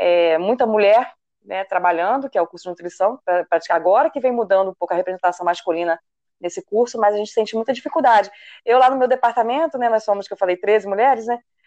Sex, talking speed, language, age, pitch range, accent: female, 225 wpm, Portuguese, 20-39, 185-235 Hz, Brazilian